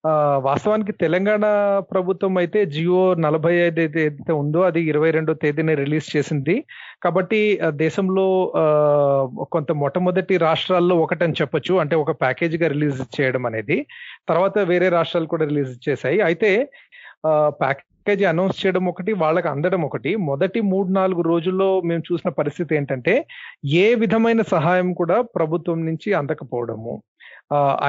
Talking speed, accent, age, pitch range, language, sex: 130 wpm, native, 30-49, 150-190 Hz, Telugu, male